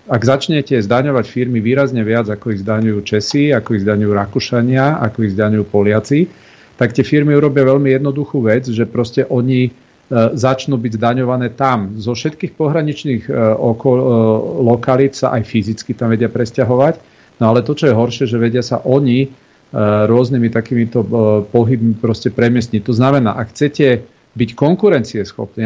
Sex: male